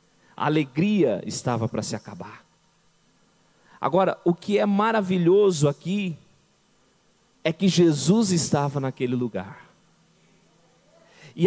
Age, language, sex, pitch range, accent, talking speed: 50-69, Portuguese, male, 170-275 Hz, Brazilian, 100 wpm